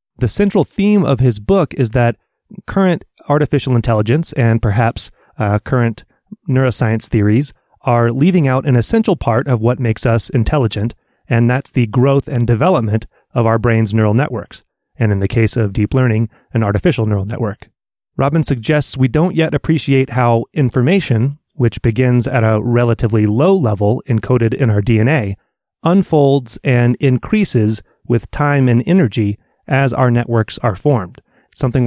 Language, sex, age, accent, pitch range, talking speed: English, male, 30-49, American, 115-140 Hz, 155 wpm